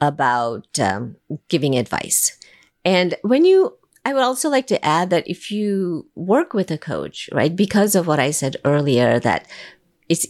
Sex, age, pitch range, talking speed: female, 50-69, 125-170 Hz, 170 wpm